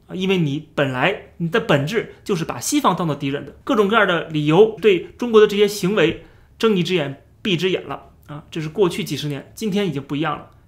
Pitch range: 155-205 Hz